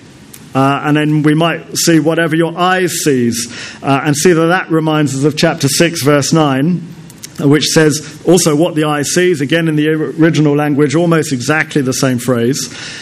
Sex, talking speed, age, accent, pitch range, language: male, 180 wpm, 40-59, British, 130-165 Hz, English